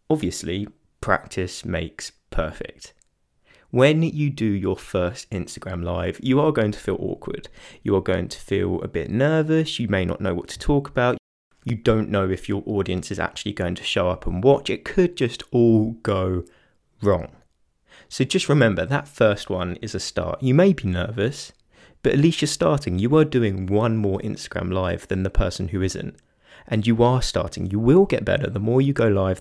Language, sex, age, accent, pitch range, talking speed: English, male, 20-39, British, 90-125 Hz, 195 wpm